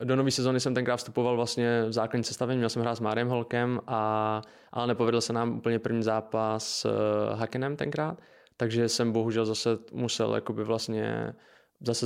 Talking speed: 175 wpm